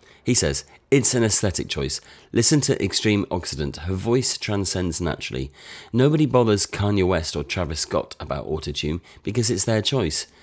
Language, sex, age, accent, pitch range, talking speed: English, male, 30-49, British, 75-110 Hz, 155 wpm